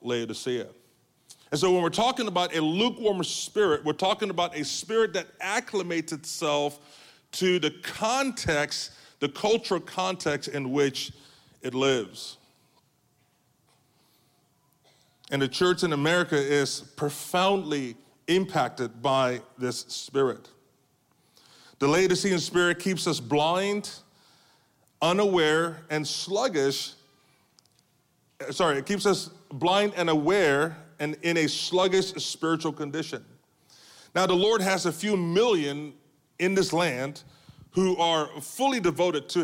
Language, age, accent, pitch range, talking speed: English, 30-49, American, 145-185 Hz, 115 wpm